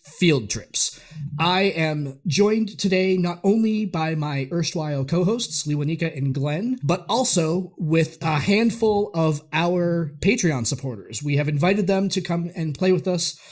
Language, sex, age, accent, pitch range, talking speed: English, male, 30-49, American, 150-185 Hz, 150 wpm